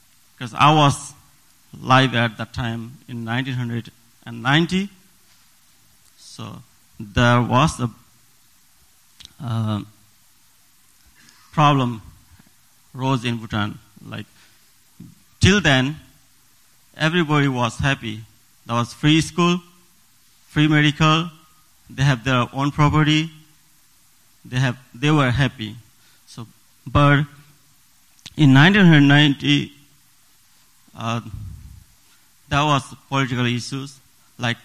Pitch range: 115-145 Hz